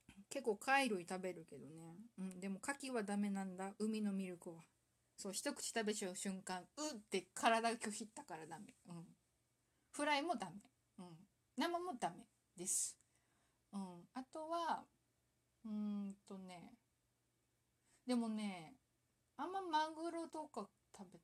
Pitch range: 185-255 Hz